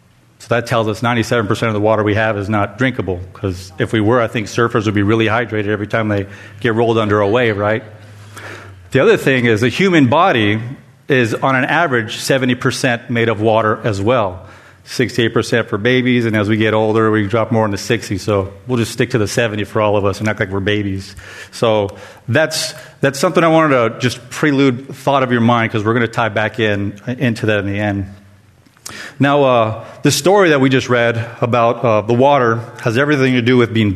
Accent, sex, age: American, male, 40-59